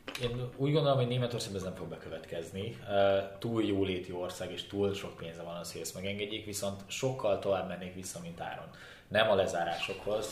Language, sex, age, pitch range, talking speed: Hungarian, male, 20-39, 95-120 Hz, 180 wpm